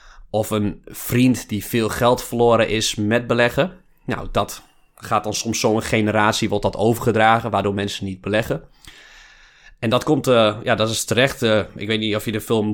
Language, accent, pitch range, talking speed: Dutch, Dutch, 105-120 Hz, 190 wpm